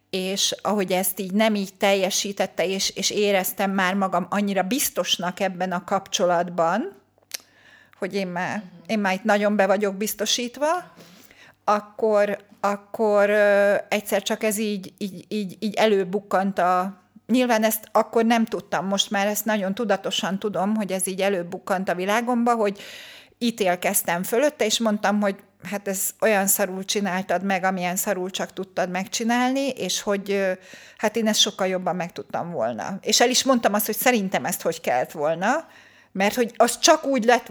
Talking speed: 160 wpm